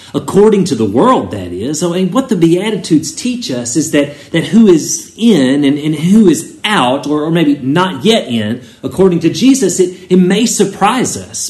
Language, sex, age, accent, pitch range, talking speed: English, male, 40-59, American, 110-175 Hz, 200 wpm